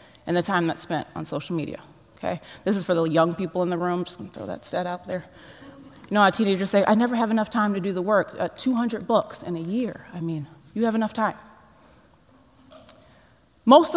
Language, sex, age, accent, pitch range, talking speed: English, female, 20-39, American, 175-220 Hz, 225 wpm